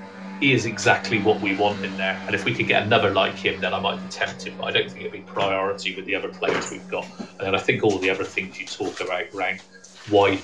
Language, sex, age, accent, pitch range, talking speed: English, male, 30-49, British, 95-110 Hz, 270 wpm